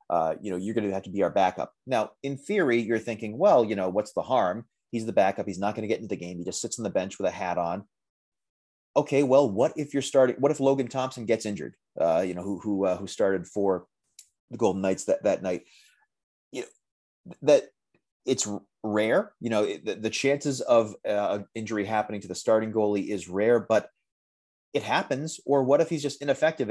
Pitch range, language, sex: 95-120 Hz, English, male